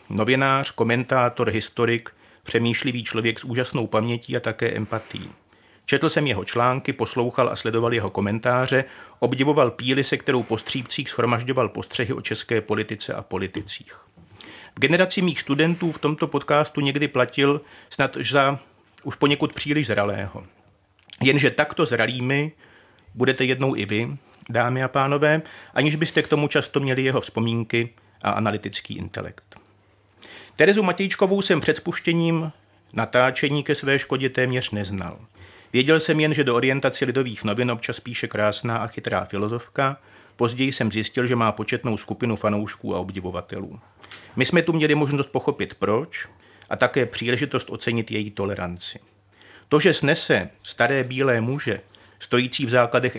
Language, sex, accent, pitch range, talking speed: Czech, male, native, 110-140 Hz, 140 wpm